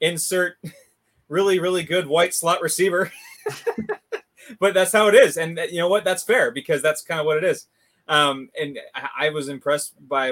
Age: 20-39